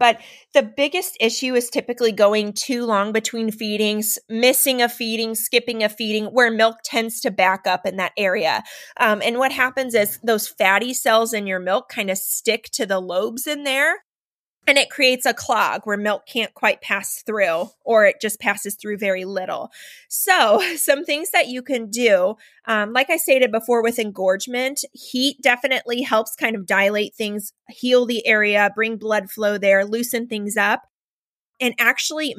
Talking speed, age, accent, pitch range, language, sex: 180 wpm, 20-39, American, 205-255 Hz, English, female